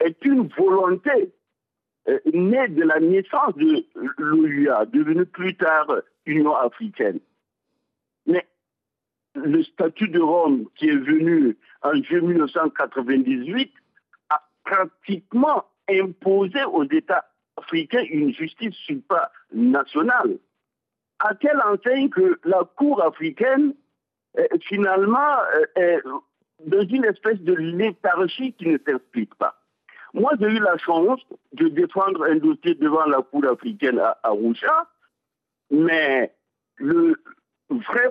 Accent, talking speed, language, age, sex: French, 115 wpm, French, 60-79, male